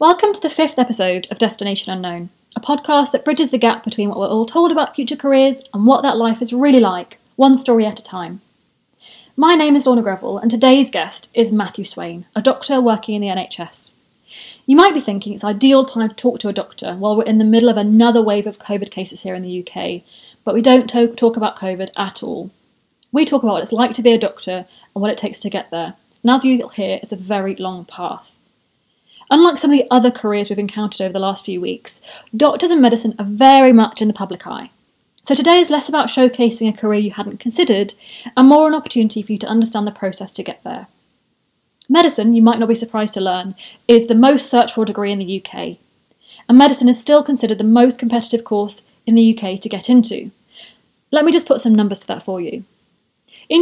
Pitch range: 205-260 Hz